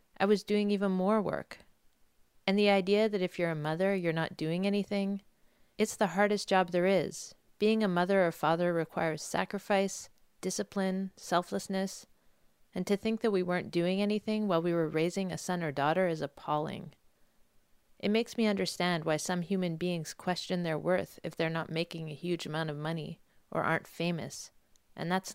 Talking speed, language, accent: 180 wpm, English, American